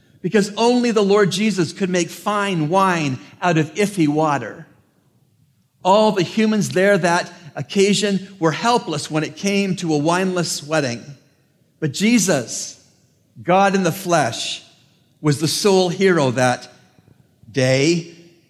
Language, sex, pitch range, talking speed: English, male, 150-195 Hz, 130 wpm